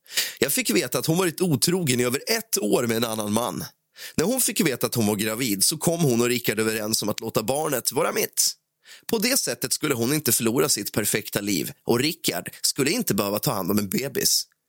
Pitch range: 110-145 Hz